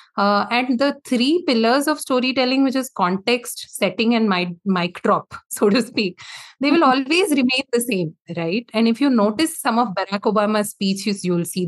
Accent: Indian